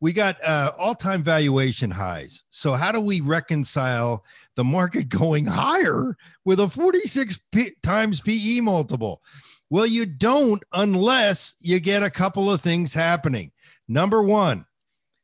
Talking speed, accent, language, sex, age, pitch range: 135 wpm, American, English, male, 50-69, 140-195 Hz